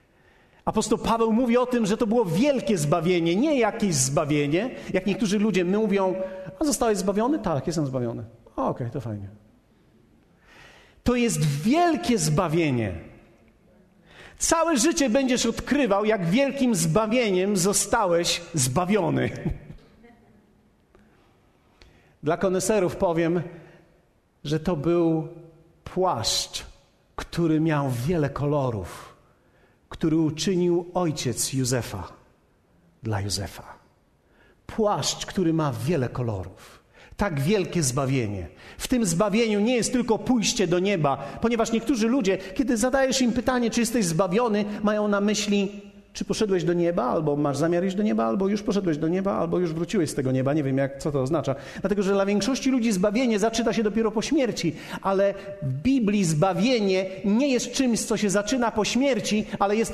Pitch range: 160-230 Hz